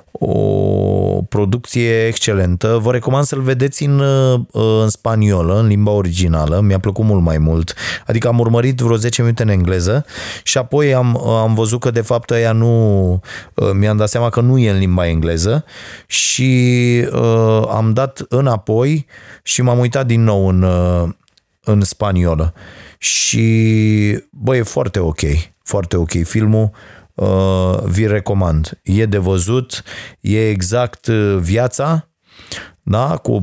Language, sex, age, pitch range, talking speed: Romanian, male, 30-49, 95-120 Hz, 140 wpm